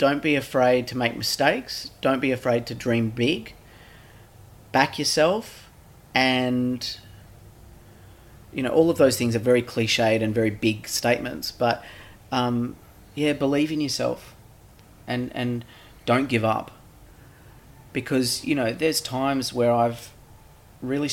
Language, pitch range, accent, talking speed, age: English, 110-135 Hz, Australian, 135 wpm, 30-49